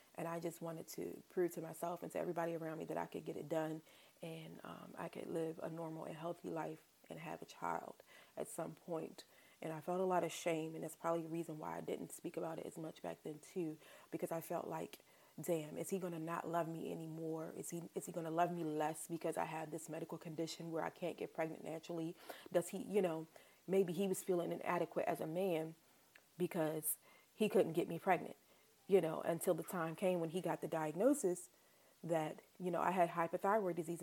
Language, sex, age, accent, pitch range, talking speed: English, female, 30-49, American, 165-185 Hz, 225 wpm